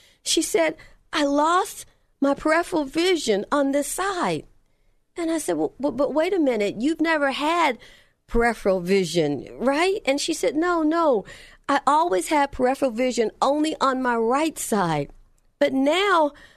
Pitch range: 225-310 Hz